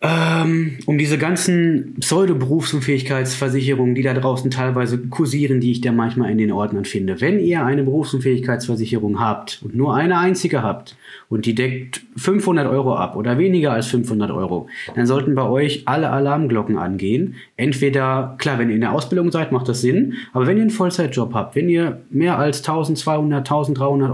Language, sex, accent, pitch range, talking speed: German, male, German, 120-155 Hz, 170 wpm